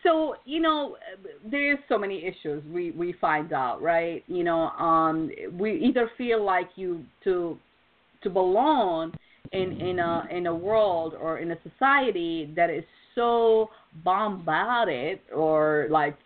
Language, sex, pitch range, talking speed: English, female, 165-215 Hz, 150 wpm